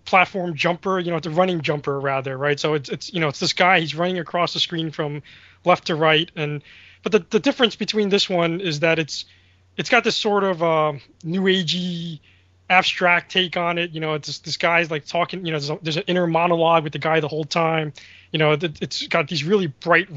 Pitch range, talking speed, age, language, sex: 145-175 Hz, 240 wpm, 20-39, English, male